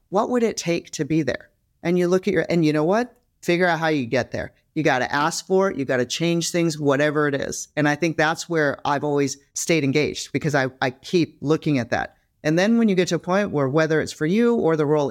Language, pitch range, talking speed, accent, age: English, 140-180 Hz, 270 wpm, American, 40-59